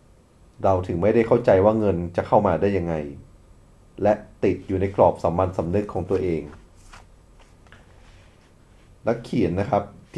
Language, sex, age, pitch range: Thai, male, 30-49, 95-115 Hz